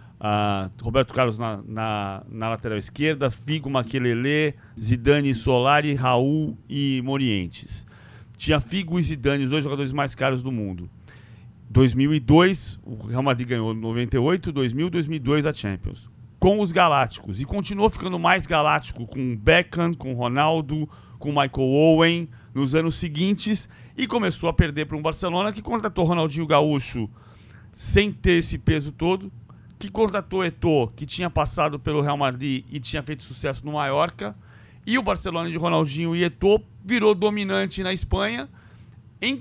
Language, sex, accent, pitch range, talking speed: Portuguese, male, Brazilian, 120-180 Hz, 150 wpm